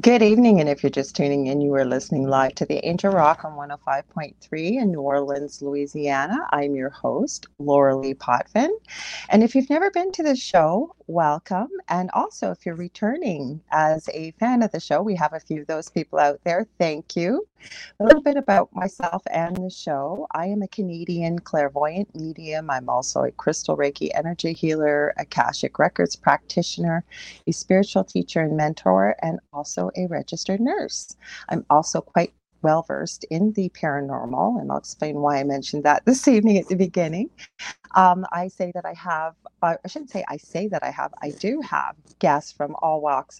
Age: 40-59